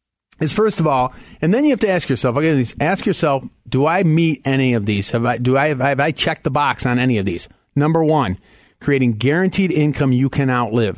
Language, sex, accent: English, male, American